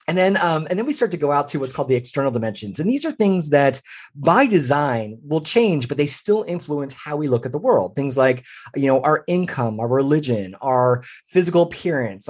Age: 30-49